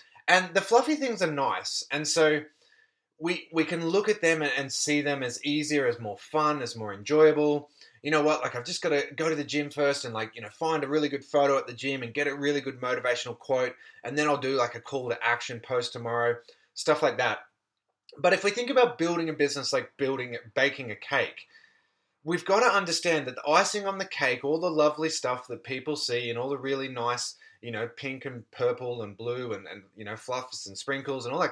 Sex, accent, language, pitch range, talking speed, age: male, Australian, English, 125-170 Hz, 235 wpm, 20-39